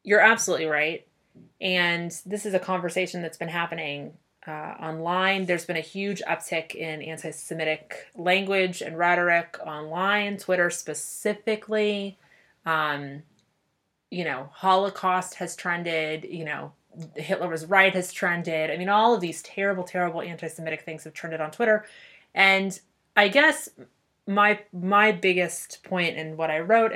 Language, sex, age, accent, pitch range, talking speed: English, female, 20-39, American, 165-205 Hz, 140 wpm